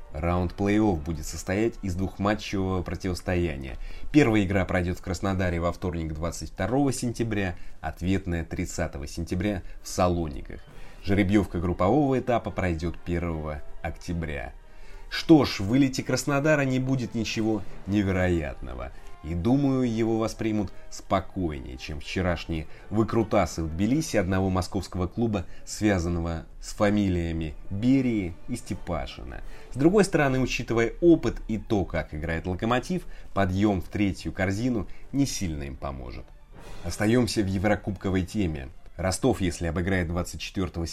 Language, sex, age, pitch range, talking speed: Russian, male, 20-39, 85-105 Hz, 120 wpm